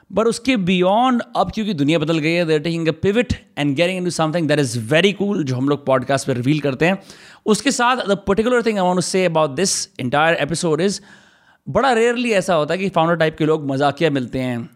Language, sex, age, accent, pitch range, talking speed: Hindi, male, 30-49, native, 135-180 Hz, 215 wpm